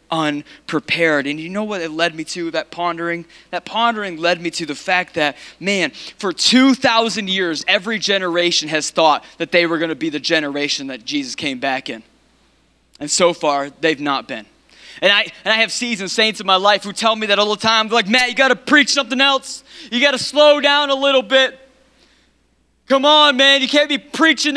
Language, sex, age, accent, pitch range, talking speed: English, male, 20-39, American, 165-275 Hz, 210 wpm